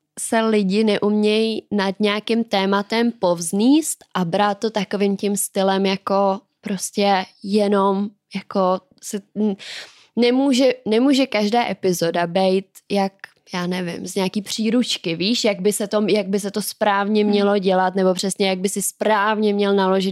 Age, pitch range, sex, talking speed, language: 20-39, 195-225 Hz, female, 135 wpm, Czech